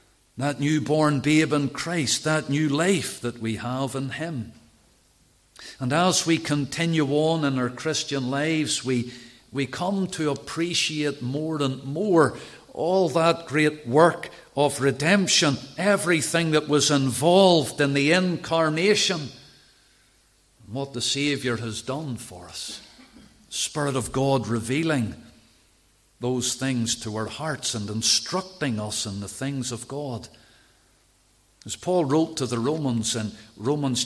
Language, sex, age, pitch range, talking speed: English, male, 50-69, 125-160 Hz, 135 wpm